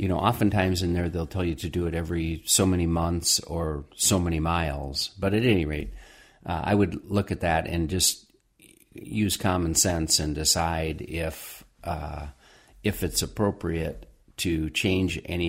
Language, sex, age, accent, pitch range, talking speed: English, male, 50-69, American, 75-90 Hz, 170 wpm